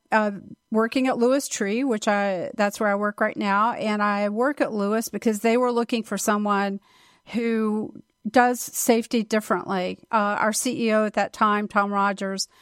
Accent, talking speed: American, 170 wpm